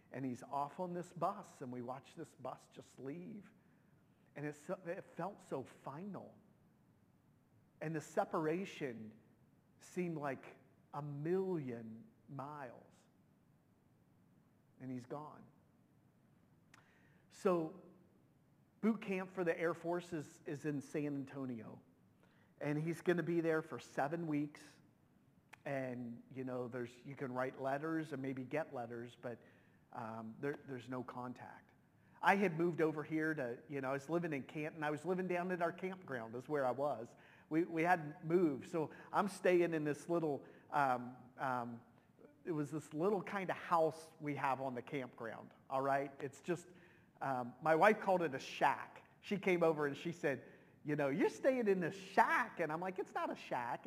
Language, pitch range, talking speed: English, 135-175 Hz, 165 wpm